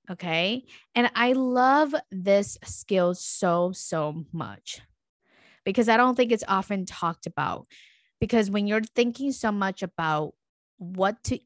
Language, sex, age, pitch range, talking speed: English, female, 20-39, 180-230 Hz, 135 wpm